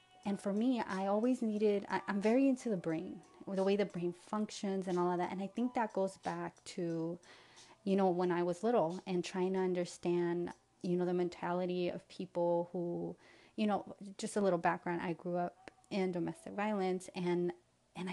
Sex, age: female, 30-49